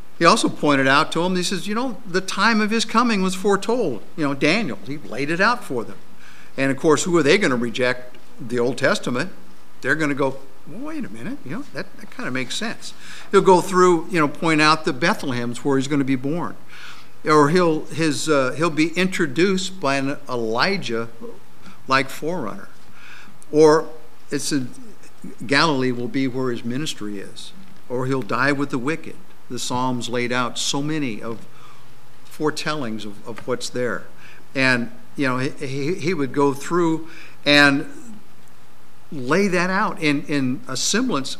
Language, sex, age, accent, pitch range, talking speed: English, male, 50-69, American, 125-170 Hz, 180 wpm